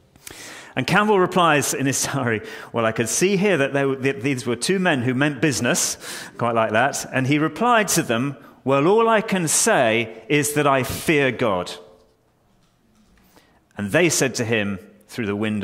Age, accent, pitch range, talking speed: 30-49, British, 110-150 Hz, 185 wpm